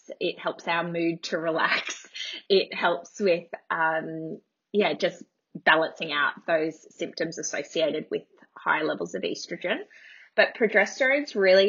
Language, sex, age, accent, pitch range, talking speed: English, female, 20-39, Australian, 165-200 Hz, 135 wpm